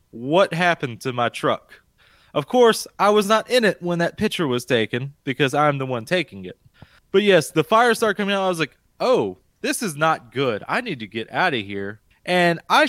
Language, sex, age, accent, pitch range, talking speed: English, male, 20-39, American, 120-170 Hz, 220 wpm